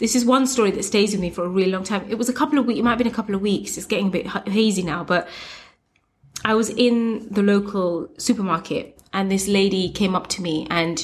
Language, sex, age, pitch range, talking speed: English, female, 20-39, 185-225 Hz, 260 wpm